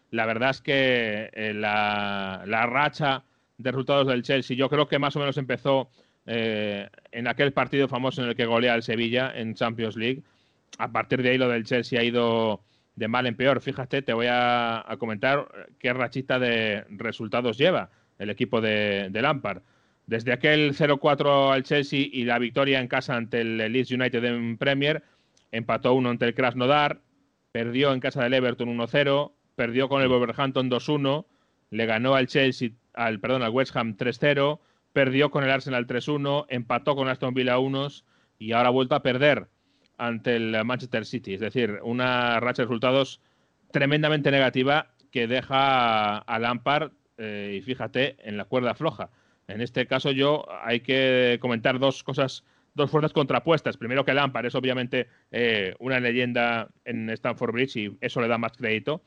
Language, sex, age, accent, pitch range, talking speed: Spanish, male, 30-49, Spanish, 115-135 Hz, 175 wpm